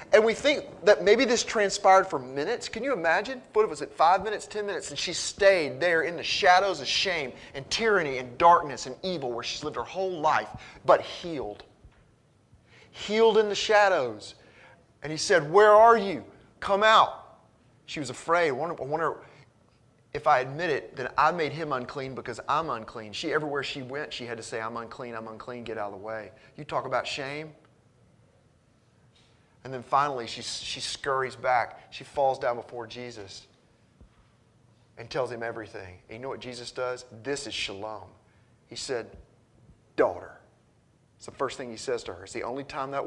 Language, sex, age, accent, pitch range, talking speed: English, male, 30-49, American, 115-150 Hz, 190 wpm